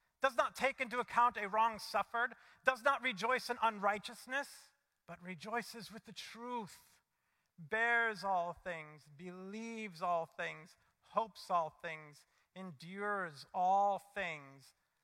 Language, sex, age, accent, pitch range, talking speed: English, male, 50-69, American, 145-180 Hz, 120 wpm